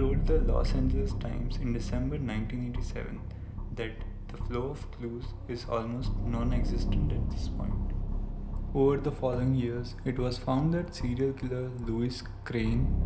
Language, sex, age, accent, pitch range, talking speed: Hindi, male, 20-39, native, 100-125 Hz, 145 wpm